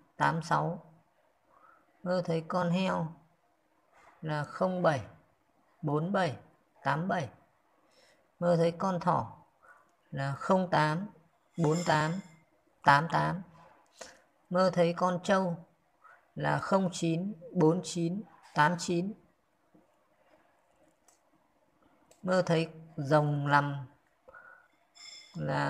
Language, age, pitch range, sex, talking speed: Vietnamese, 20-39, 155-180 Hz, female, 70 wpm